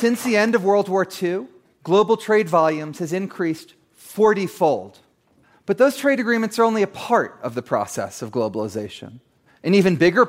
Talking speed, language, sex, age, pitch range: 170 wpm, English, male, 30-49, 135-185 Hz